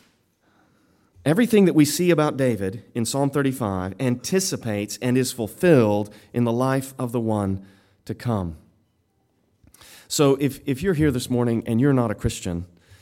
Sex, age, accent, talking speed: male, 30-49, American, 150 wpm